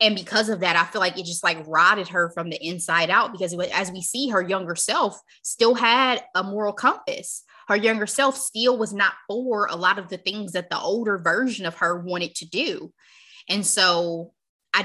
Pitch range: 170-205 Hz